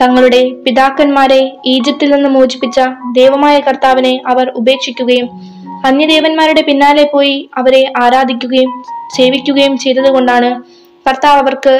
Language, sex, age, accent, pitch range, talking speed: Malayalam, female, 20-39, native, 245-280 Hz, 90 wpm